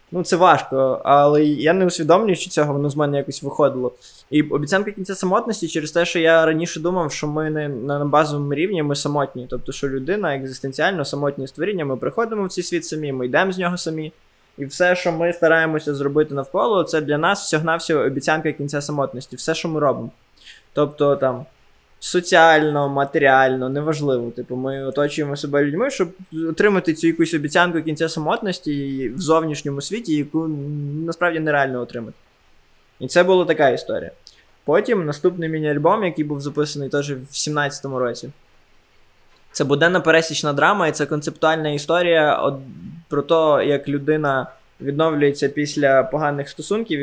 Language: Ukrainian